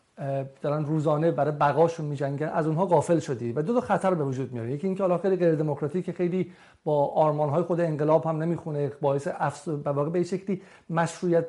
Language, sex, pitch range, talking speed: Persian, male, 155-195 Hz, 185 wpm